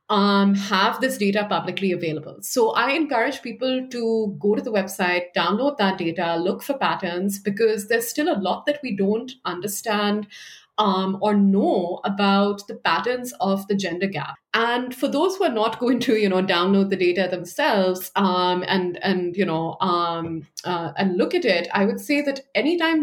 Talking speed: 180 wpm